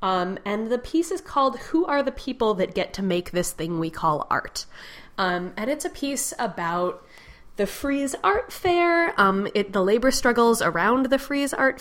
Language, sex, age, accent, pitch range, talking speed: English, female, 20-39, American, 165-220 Hz, 190 wpm